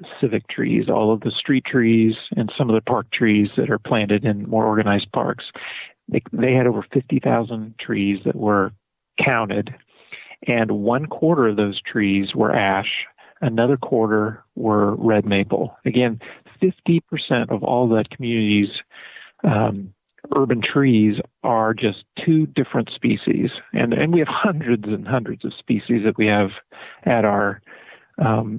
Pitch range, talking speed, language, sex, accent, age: 105-125 Hz, 150 wpm, English, male, American, 40-59